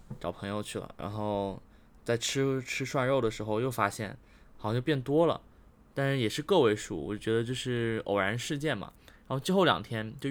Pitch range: 105-125 Hz